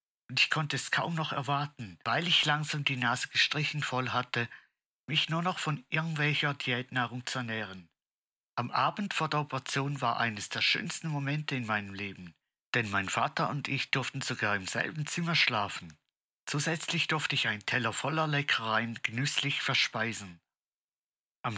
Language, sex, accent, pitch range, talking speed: German, male, German, 120-145 Hz, 160 wpm